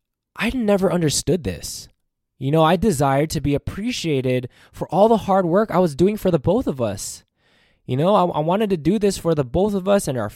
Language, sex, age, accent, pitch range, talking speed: English, male, 20-39, American, 120-175 Hz, 225 wpm